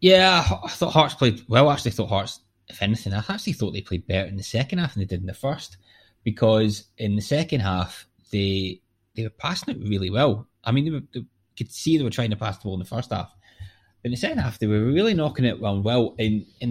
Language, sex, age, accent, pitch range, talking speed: English, male, 20-39, British, 95-120 Hz, 260 wpm